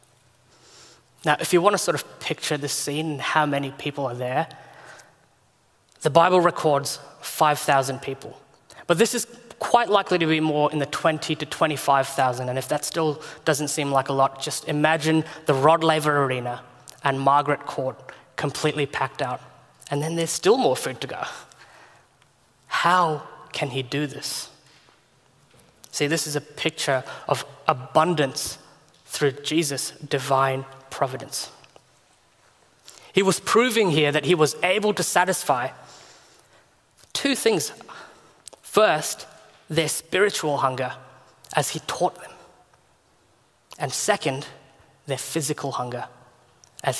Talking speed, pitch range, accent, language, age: 135 wpm, 135-160 Hz, Australian, English, 10-29